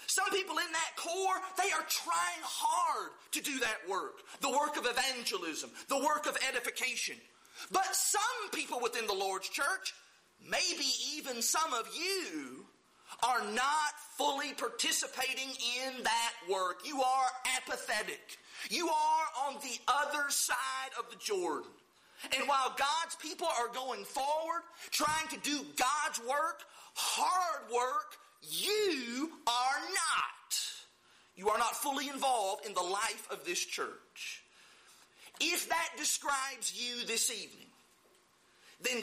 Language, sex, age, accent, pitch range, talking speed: English, male, 40-59, American, 255-340 Hz, 135 wpm